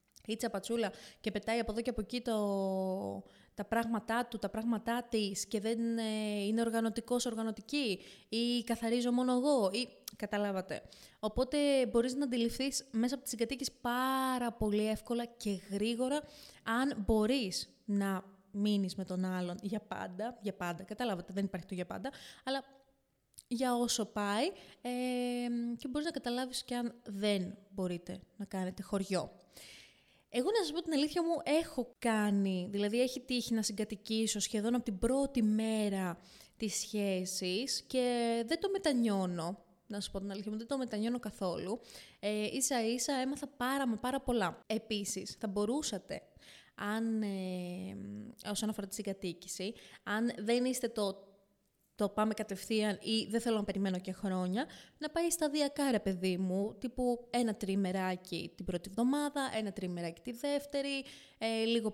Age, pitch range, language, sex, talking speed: 20-39, 200-250 Hz, Greek, female, 150 wpm